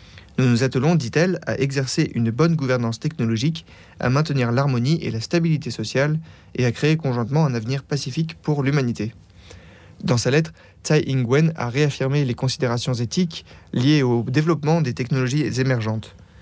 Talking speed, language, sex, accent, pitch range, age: 155 wpm, French, male, French, 120-150 Hz, 30-49